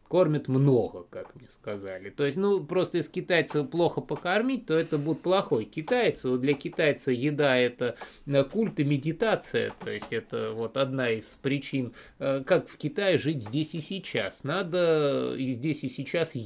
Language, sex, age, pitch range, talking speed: Russian, male, 20-39, 125-160 Hz, 170 wpm